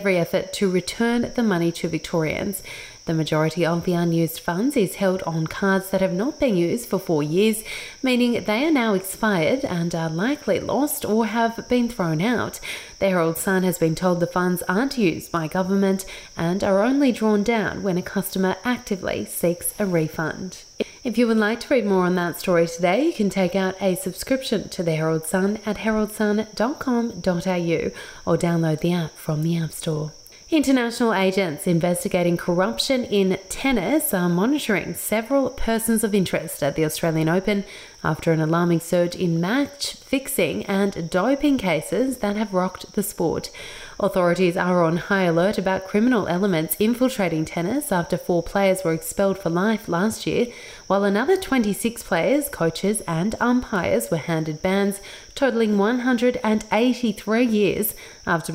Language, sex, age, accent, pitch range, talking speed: English, female, 30-49, Australian, 175-225 Hz, 160 wpm